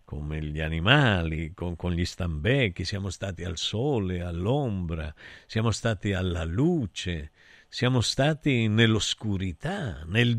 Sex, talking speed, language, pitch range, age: male, 115 wpm, Italian, 95-145 Hz, 50-69